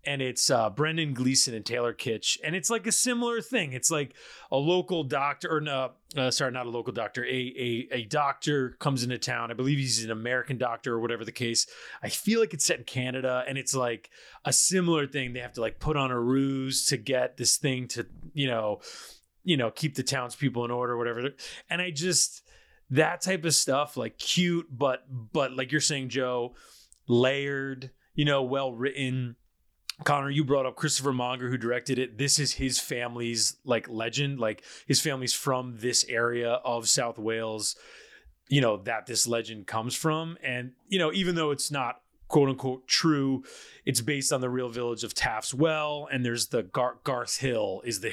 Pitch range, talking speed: 120-145 Hz, 195 wpm